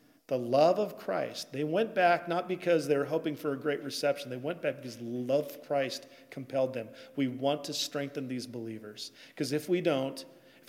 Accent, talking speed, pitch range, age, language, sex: American, 200 wpm, 130-155 Hz, 40-59, English, male